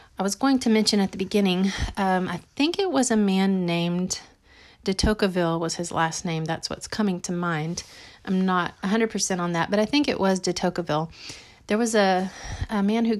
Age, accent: 40-59, American